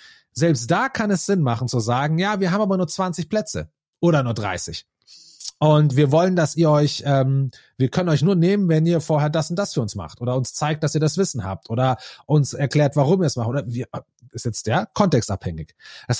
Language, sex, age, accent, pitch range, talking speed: German, male, 30-49, German, 125-180 Hz, 230 wpm